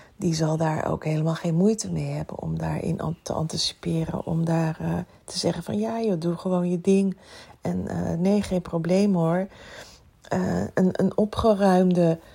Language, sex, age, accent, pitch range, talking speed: Dutch, female, 40-59, Dutch, 160-180 Hz, 170 wpm